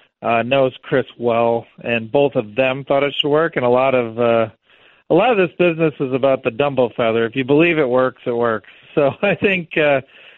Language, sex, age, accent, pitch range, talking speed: English, male, 40-59, American, 120-145 Hz, 220 wpm